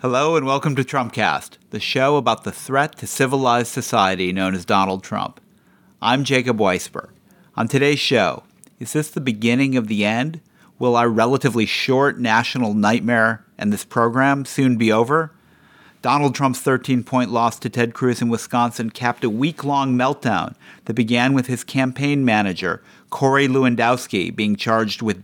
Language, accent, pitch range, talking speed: English, American, 115-140 Hz, 155 wpm